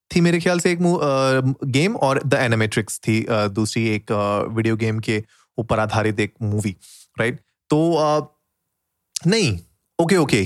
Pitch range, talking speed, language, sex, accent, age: 120-160 Hz, 130 wpm, Hindi, male, native, 30-49